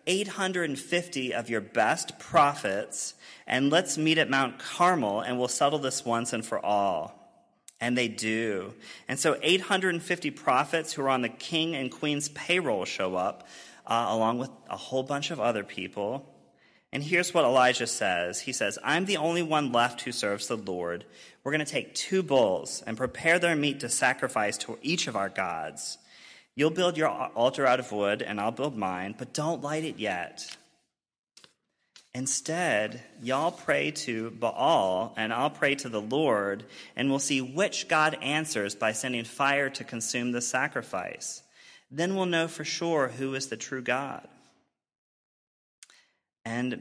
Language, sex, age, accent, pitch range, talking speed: English, male, 30-49, American, 115-155 Hz, 165 wpm